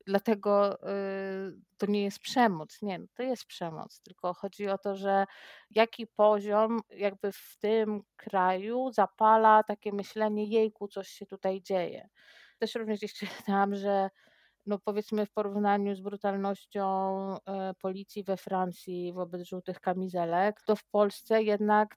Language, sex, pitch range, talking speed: Polish, female, 165-205 Hz, 130 wpm